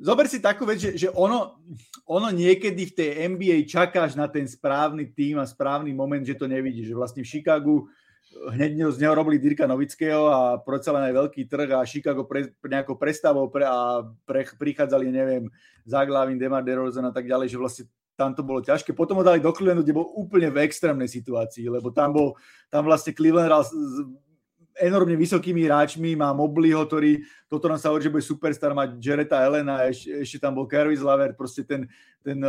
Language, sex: Czech, male